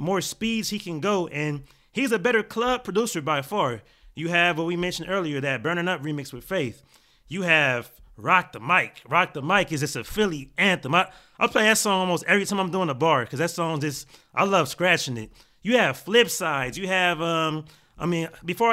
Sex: male